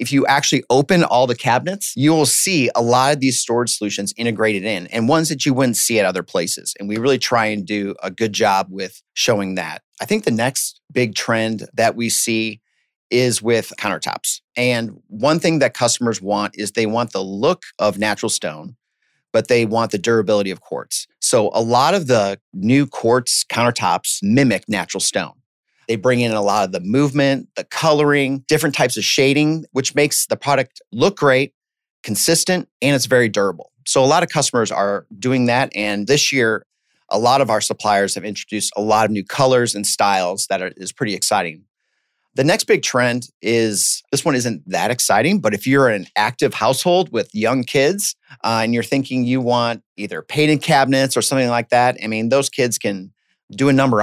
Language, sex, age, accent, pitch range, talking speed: English, male, 30-49, American, 105-135 Hz, 200 wpm